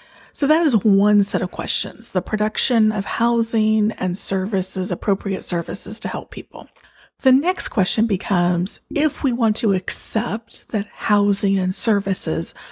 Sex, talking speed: female, 145 wpm